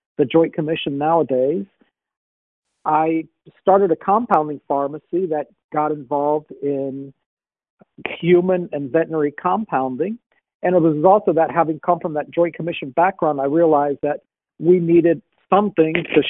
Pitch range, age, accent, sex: 150-175 Hz, 50-69, American, male